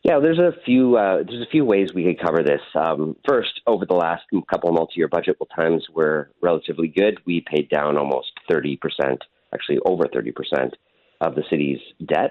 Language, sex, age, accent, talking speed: English, male, 40-59, American, 205 wpm